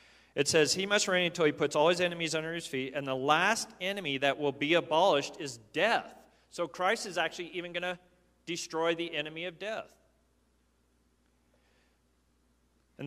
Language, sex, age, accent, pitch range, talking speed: English, male, 40-59, American, 130-175 Hz, 170 wpm